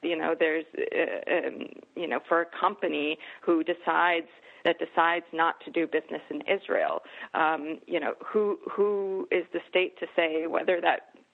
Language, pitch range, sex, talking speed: English, 165-210 Hz, female, 170 wpm